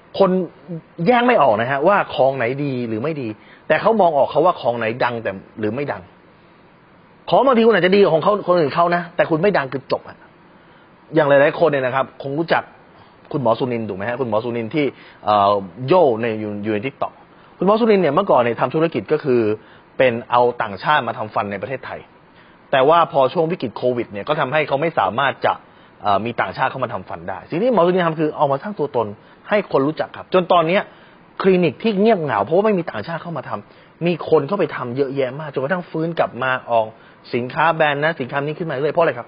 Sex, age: male, 30-49